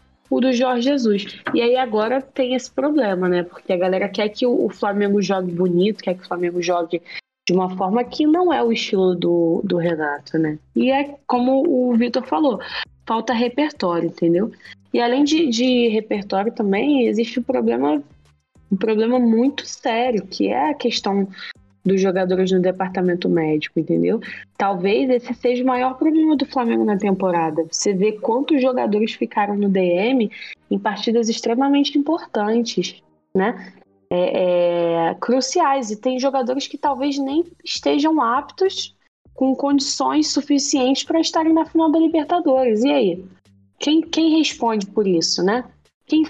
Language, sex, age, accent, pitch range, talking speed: Portuguese, female, 20-39, Brazilian, 180-265 Hz, 155 wpm